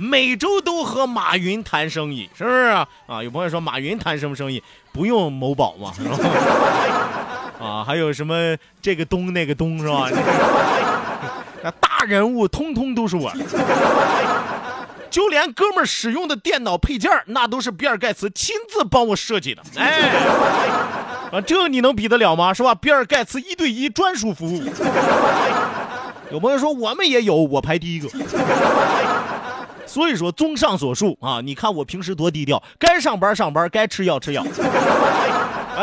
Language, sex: Chinese, male